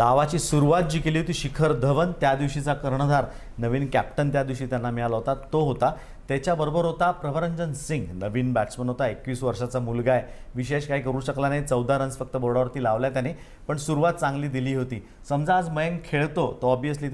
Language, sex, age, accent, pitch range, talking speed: Marathi, male, 40-59, native, 125-145 Hz, 180 wpm